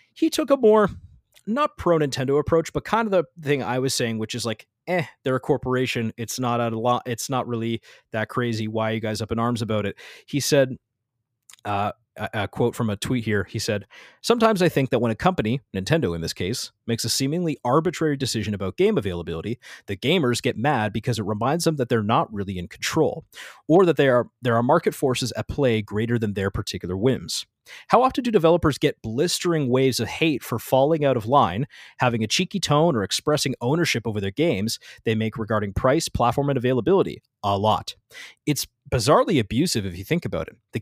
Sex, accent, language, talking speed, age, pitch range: male, American, English, 205 wpm, 30-49, 110-150 Hz